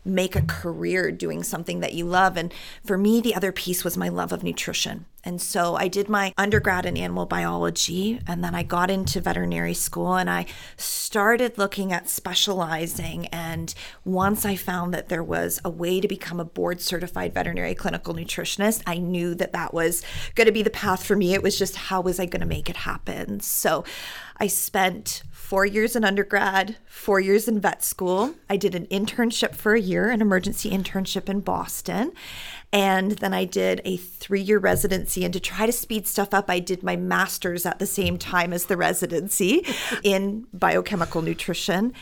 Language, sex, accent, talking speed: English, female, American, 190 wpm